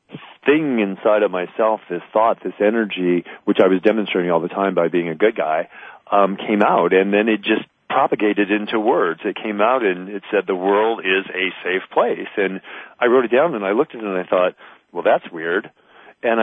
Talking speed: 215 wpm